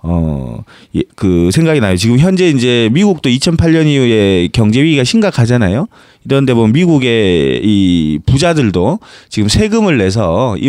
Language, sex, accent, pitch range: Korean, male, native, 105-155 Hz